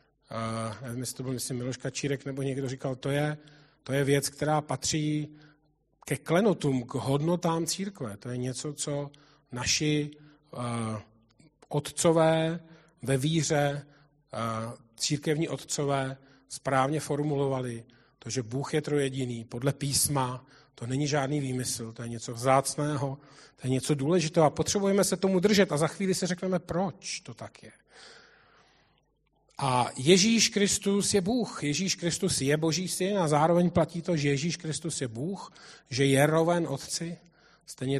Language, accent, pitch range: Czech, native, 135-175 Hz